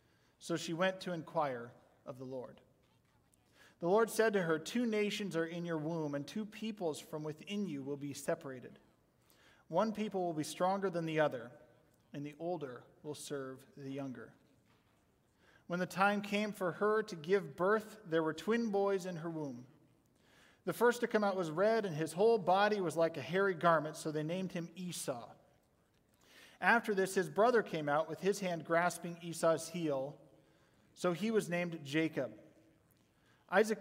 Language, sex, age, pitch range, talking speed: English, male, 40-59, 150-200 Hz, 175 wpm